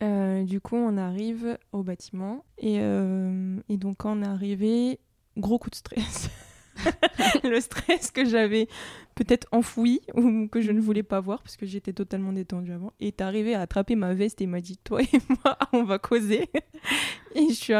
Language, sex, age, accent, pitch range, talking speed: French, female, 20-39, French, 185-230 Hz, 185 wpm